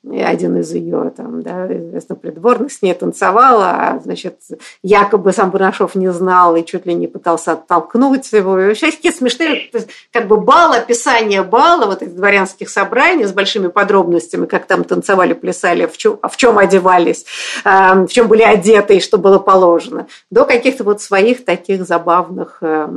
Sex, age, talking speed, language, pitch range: female, 50-69, 165 wpm, Russian, 190-235 Hz